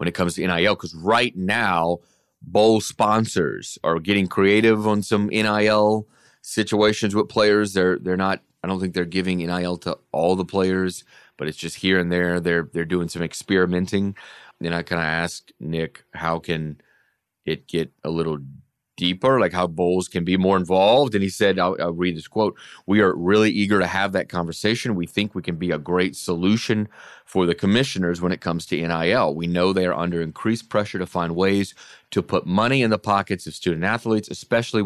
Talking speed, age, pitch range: 200 wpm, 30-49, 85-105 Hz